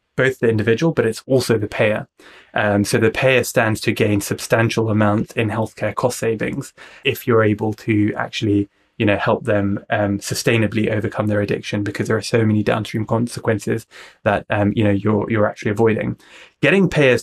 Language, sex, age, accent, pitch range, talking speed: English, male, 20-39, British, 110-120 Hz, 185 wpm